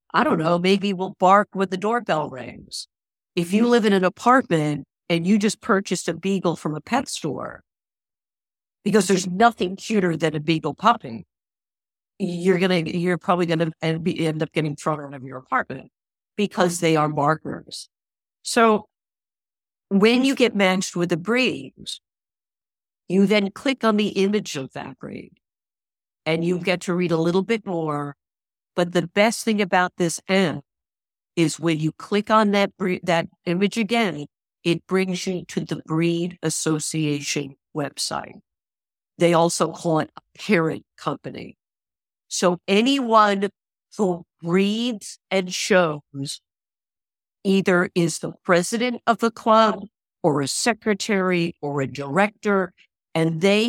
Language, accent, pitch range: English, American, 155-200 Hz